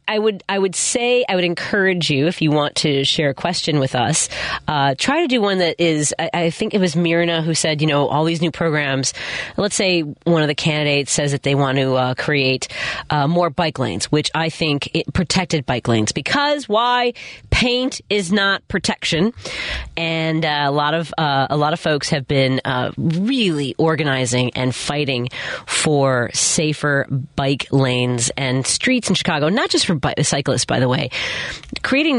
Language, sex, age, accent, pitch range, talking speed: English, female, 40-59, American, 135-175 Hz, 195 wpm